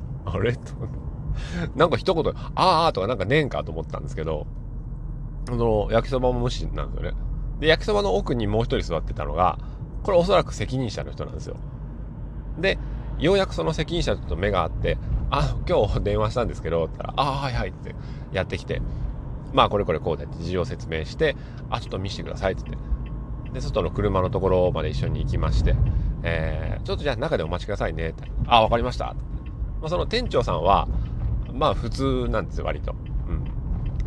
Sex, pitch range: male, 95-135 Hz